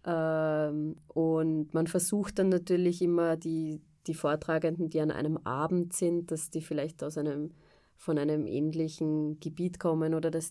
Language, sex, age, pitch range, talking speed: German, female, 20-39, 155-170 Hz, 135 wpm